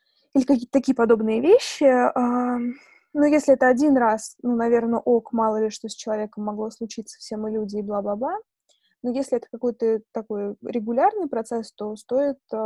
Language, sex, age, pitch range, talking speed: Russian, female, 20-39, 225-275 Hz, 160 wpm